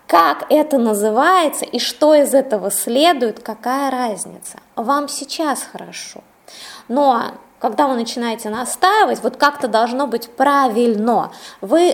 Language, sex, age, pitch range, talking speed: Russian, female, 20-39, 220-300 Hz, 120 wpm